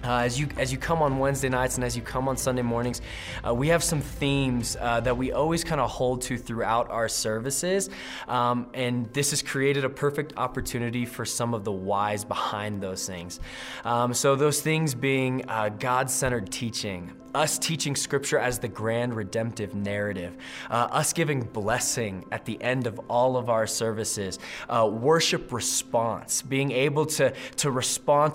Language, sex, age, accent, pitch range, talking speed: English, male, 20-39, American, 120-150 Hz, 175 wpm